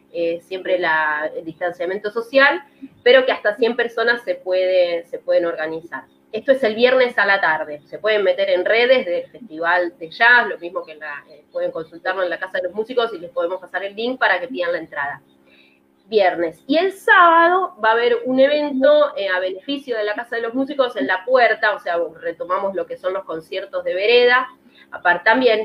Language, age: Spanish, 20-39